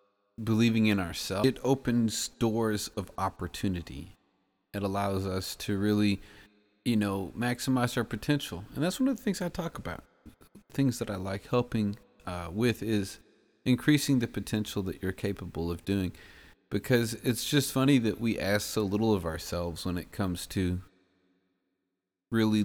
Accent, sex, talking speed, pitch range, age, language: American, male, 155 wpm, 95-115 Hz, 30-49, English